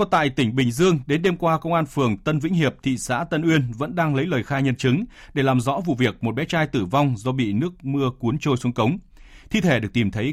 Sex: male